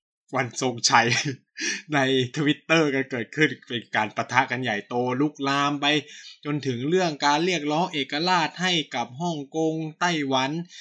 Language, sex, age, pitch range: Thai, male, 20-39, 120-150 Hz